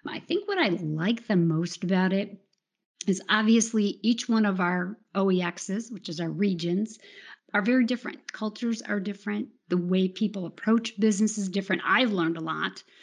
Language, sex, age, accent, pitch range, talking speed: English, female, 40-59, American, 180-215 Hz, 170 wpm